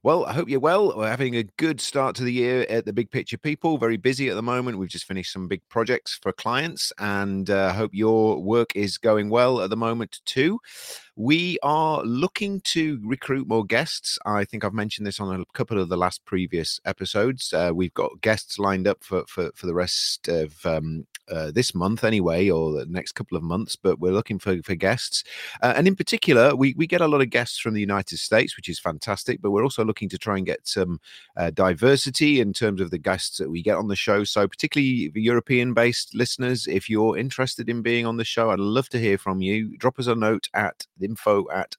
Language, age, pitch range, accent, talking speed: English, 30-49, 95-120 Hz, British, 225 wpm